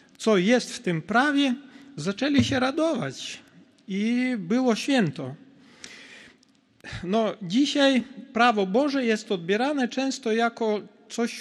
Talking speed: 100 wpm